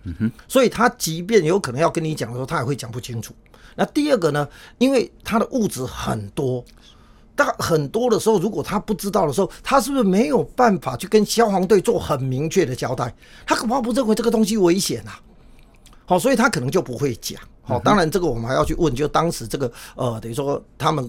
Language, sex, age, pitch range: Chinese, male, 50-69, 120-180 Hz